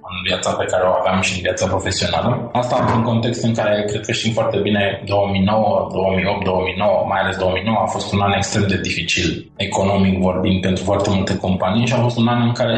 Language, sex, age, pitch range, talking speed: Romanian, male, 20-39, 95-110 Hz, 215 wpm